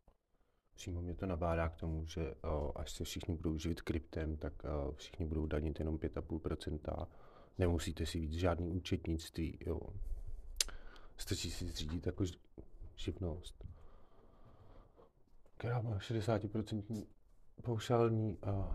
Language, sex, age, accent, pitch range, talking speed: Czech, male, 40-59, native, 85-105 Hz, 115 wpm